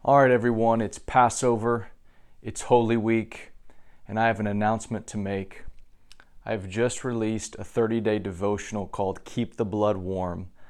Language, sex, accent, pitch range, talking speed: English, male, American, 100-120 Hz, 140 wpm